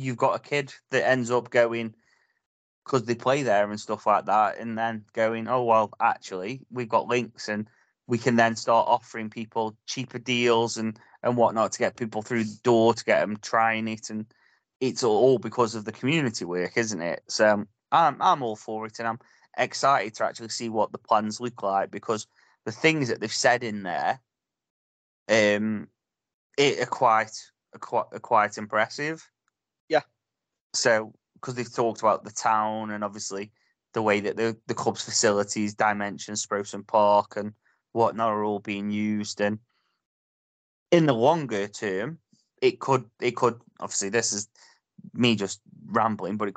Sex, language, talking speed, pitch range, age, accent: male, English, 170 wpm, 105-120 Hz, 20-39, British